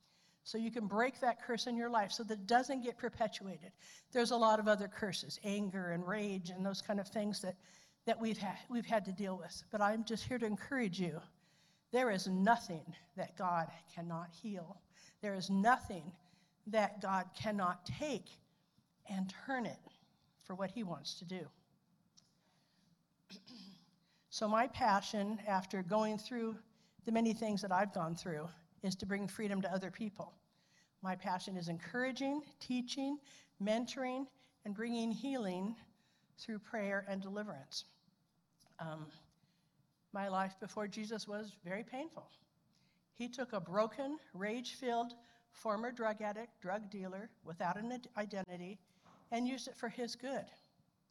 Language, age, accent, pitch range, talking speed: English, 60-79, American, 180-225 Hz, 150 wpm